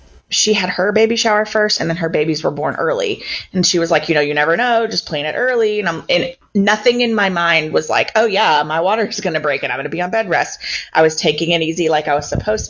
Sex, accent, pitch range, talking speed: female, American, 150-190 Hz, 285 wpm